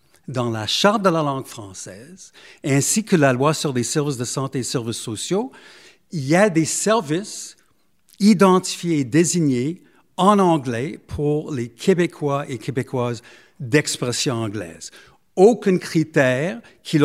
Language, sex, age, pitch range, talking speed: French, male, 60-79, 130-175 Hz, 135 wpm